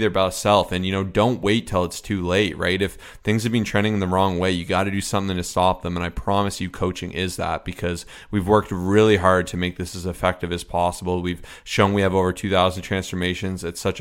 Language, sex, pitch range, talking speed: English, male, 90-105 Hz, 250 wpm